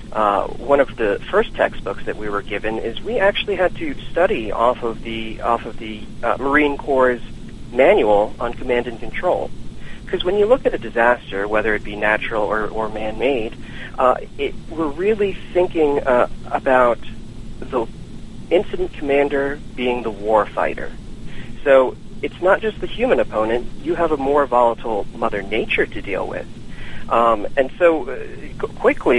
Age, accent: 40-59, American